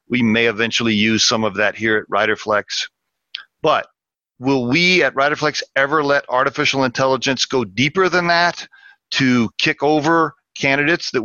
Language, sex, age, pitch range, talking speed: English, male, 50-69, 130-185 Hz, 150 wpm